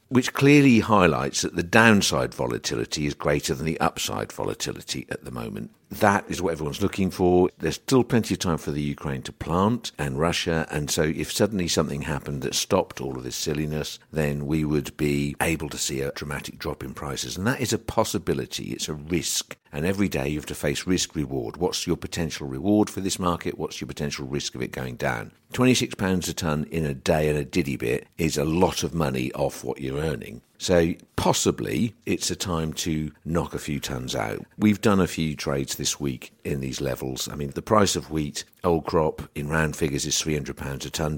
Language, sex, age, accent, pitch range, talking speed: English, male, 60-79, British, 70-90 Hz, 210 wpm